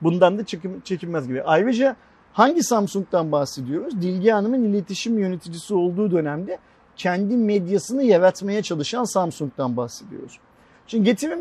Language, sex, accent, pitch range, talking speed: Turkish, male, native, 165-240 Hz, 120 wpm